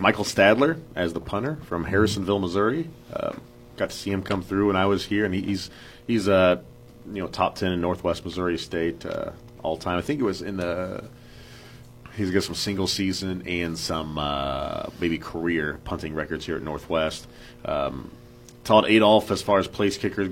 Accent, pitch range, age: American, 85-95 Hz, 30-49